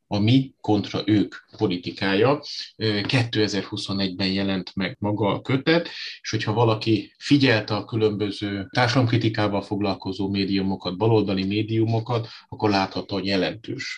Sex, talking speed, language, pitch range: male, 110 wpm, Hungarian, 100-115 Hz